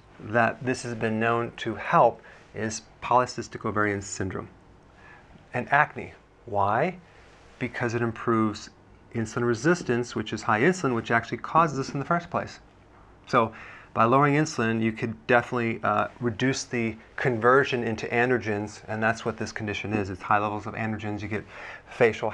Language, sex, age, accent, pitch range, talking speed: English, male, 40-59, American, 105-125 Hz, 155 wpm